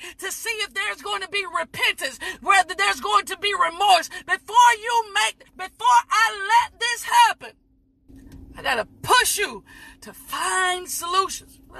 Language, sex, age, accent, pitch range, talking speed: English, female, 40-59, American, 335-405 Hz, 155 wpm